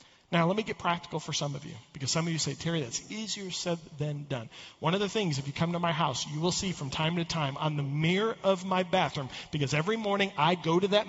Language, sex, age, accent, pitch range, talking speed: English, male, 40-59, American, 145-205 Hz, 270 wpm